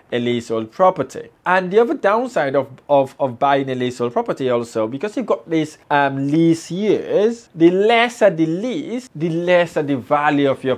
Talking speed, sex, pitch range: 180 wpm, male, 130-180 Hz